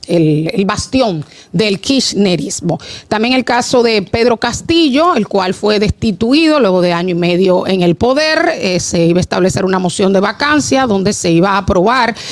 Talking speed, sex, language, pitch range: 175 wpm, female, Spanish, 185-245 Hz